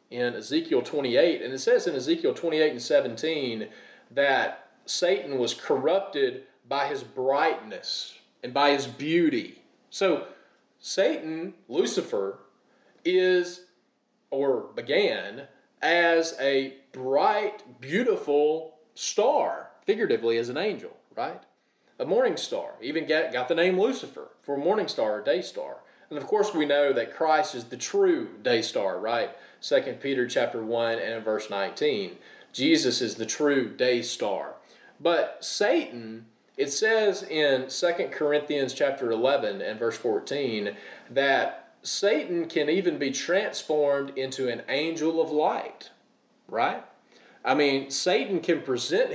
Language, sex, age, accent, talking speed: English, male, 30-49, American, 135 wpm